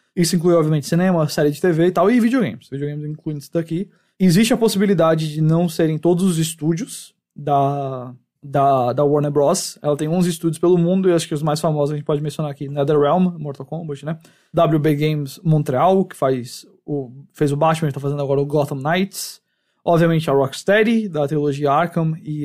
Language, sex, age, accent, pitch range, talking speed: English, male, 20-39, Brazilian, 145-175 Hz, 200 wpm